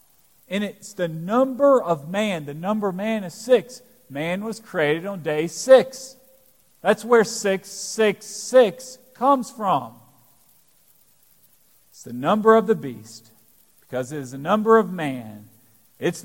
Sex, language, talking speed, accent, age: male, English, 145 wpm, American, 40-59